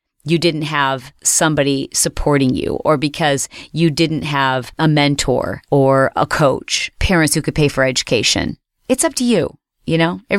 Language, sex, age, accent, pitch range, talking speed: English, female, 40-59, American, 140-180 Hz, 170 wpm